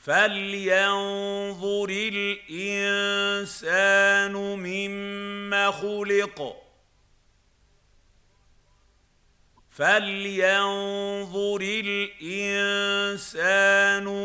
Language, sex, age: Arabic, male, 50-69